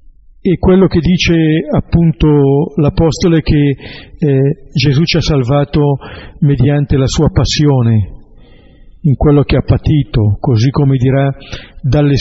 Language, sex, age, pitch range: Italian, male, 50-69, 130-150 Hz